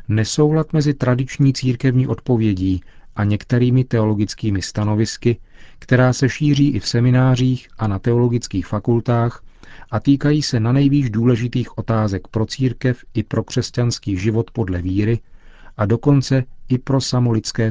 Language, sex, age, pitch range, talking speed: Czech, male, 40-59, 100-125 Hz, 130 wpm